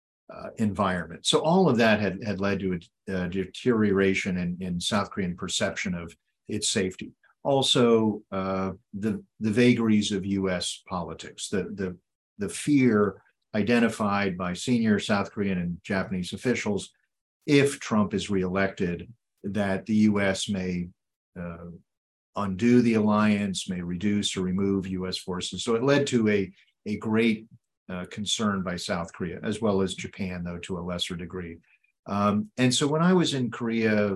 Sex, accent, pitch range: male, American, 95-120 Hz